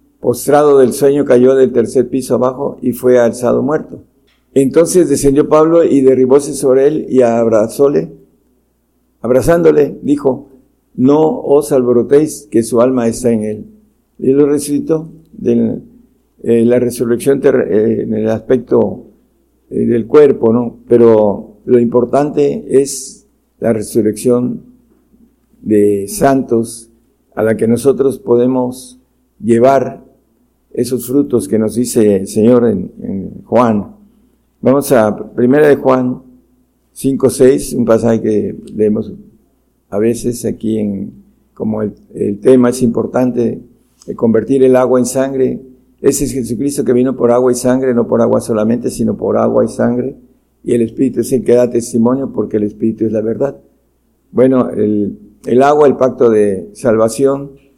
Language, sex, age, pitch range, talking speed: Spanish, male, 50-69, 115-135 Hz, 140 wpm